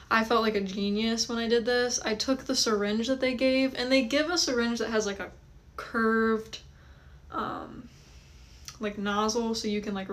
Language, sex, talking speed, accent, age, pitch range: English, female, 195 wpm, American, 10-29, 195-235 Hz